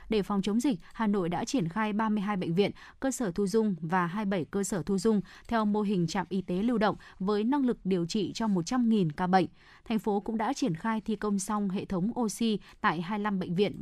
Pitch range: 185-230 Hz